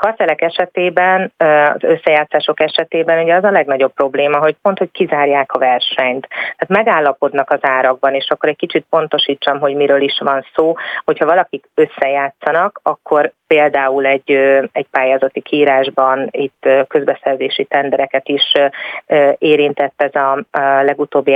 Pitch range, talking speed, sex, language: 135-160 Hz, 130 wpm, female, Hungarian